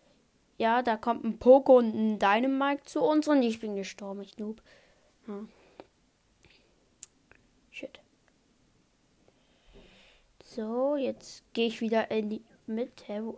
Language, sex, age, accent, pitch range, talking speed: German, female, 20-39, German, 220-275 Hz, 115 wpm